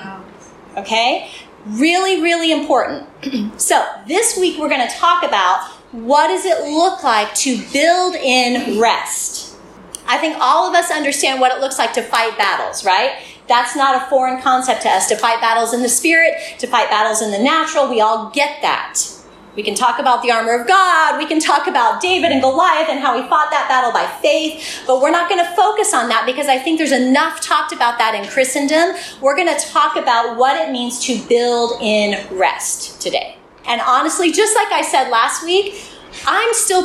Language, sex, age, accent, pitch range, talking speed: English, female, 30-49, American, 235-325 Hz, 200 wpm